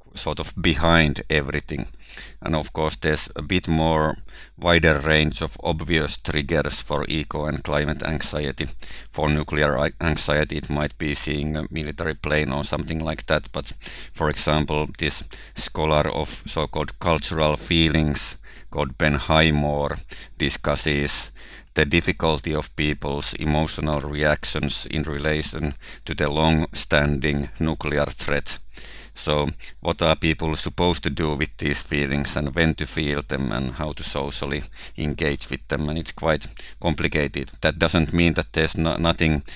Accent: Finnish